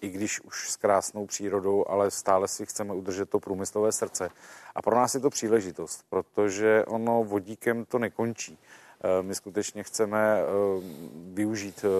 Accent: native